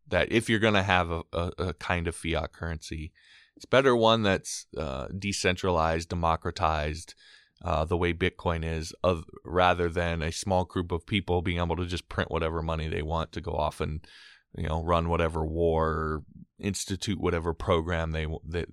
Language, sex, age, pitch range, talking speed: English, male, 20-39, 85-105 Hz, 185 wpm